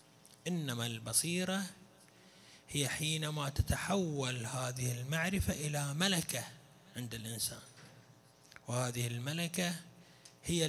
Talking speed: 80 wpm